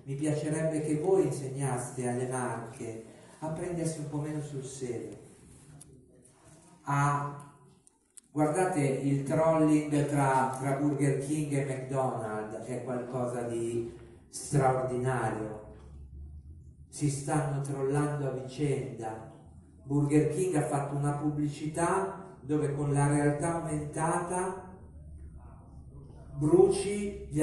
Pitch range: 125-155 Hz